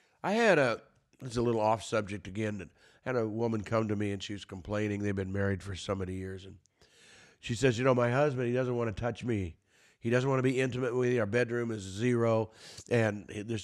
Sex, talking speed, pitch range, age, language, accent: male, 240 wpm, 105-130 Hz, 50-69, English, American